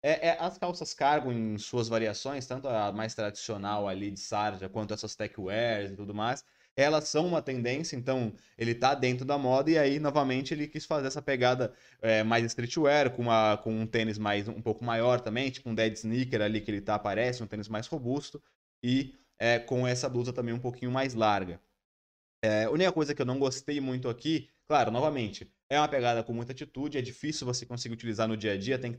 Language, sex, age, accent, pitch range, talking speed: Portuguese, male, 20-39, Brazilian, 115-150 Hz, 215 wpm